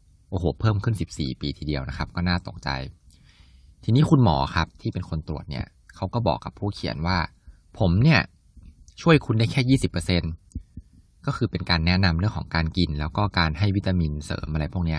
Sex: male